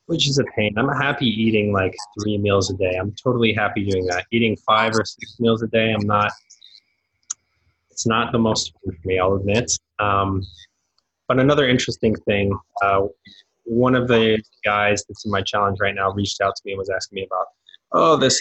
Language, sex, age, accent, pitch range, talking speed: English, male, 20-39, American, 100-120 Hz, 200 wpm